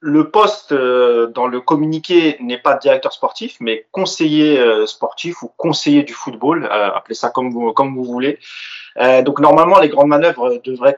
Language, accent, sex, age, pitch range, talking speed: French, French, male, 30-49, 135-195 Hz, 160 wpm